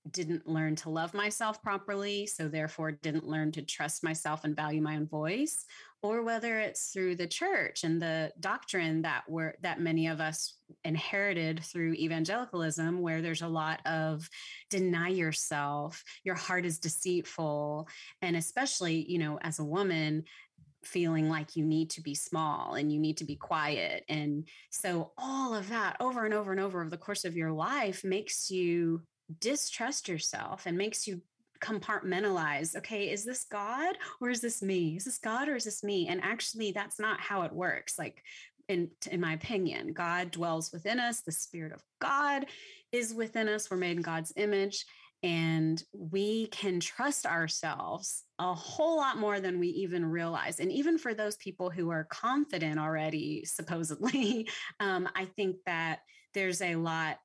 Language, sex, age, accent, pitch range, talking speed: English, female, 30-49, American, 160-210 Hz, 170 wpm